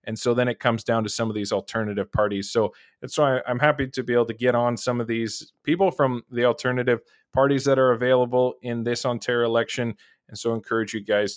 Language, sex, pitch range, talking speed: English, male, 110-125 Hz, 240 wpm